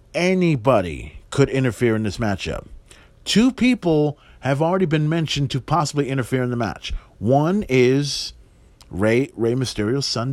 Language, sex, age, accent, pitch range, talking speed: English, male, 40-59, American, 115-155 Hz, 140 wpm